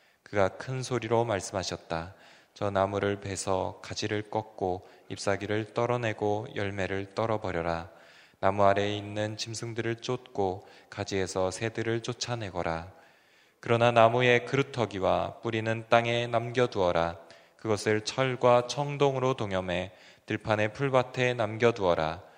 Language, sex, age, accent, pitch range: Korean, male, 20-39, native, 95-120 Hz